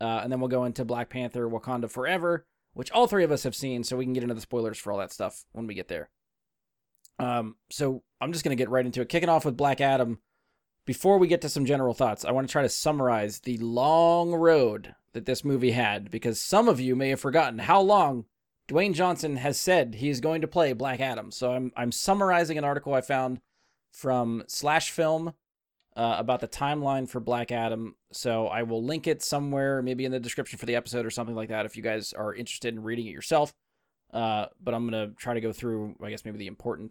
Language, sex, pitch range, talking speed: English, male, 115-145 Hz, 235 wpm